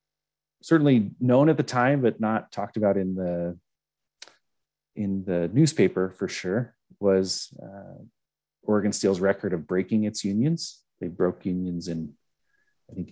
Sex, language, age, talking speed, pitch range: male, English, 30-49, 140 wpm, 95-125 Hz